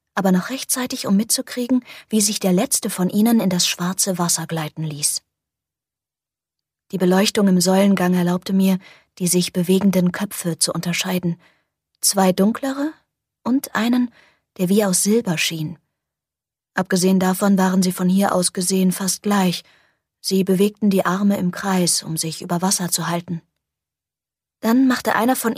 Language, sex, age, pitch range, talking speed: German, female, 20-39, 180-210 Hz, 150 wpm